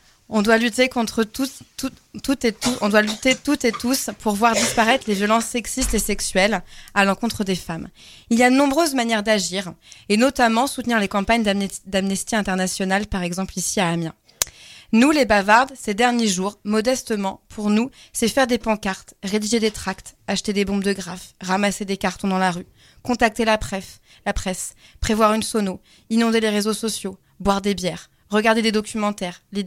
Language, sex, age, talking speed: French, female, 20-39, 185 wpm